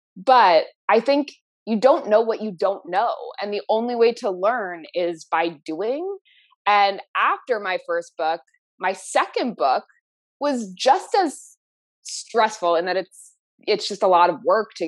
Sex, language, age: female, English, 20-39